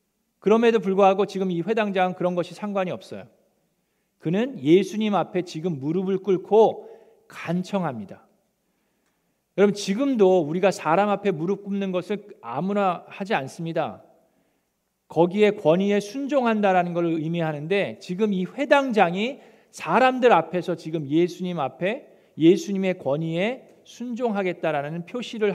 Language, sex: Korean, male